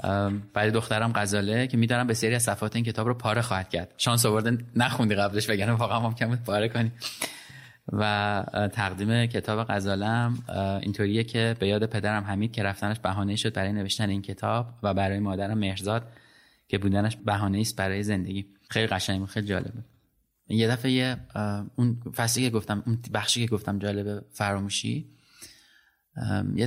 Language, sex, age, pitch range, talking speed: Persian, male, 20-39, 105-135 Hz, 155 wpm